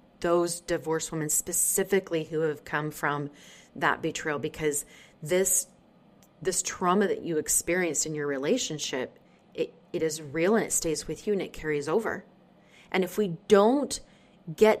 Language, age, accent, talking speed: English, 30-49, American, 155 wpm